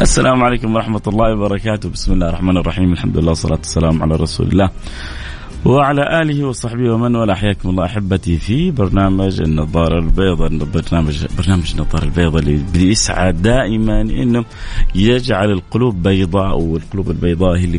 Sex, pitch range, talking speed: male, 85-120 Hz, 140 wpm